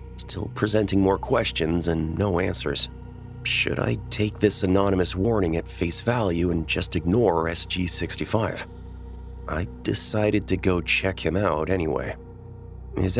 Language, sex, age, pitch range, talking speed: English, male, 30-49, 80-105 Hz, 135 wpm